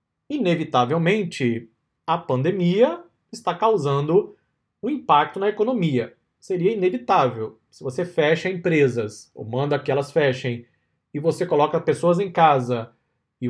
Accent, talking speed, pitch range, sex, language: Brazilian, 120 wpm, 135-185 Hz, male, Portuguese